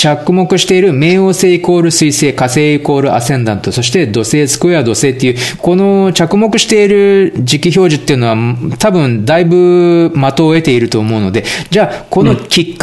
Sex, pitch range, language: male, 120-180 Hz, Japanese